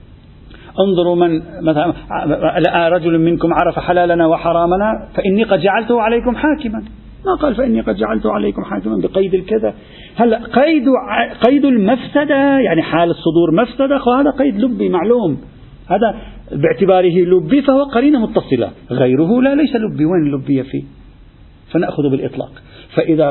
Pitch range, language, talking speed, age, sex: 135-210 Hz, Arabic, 130 wpm, 50-69, male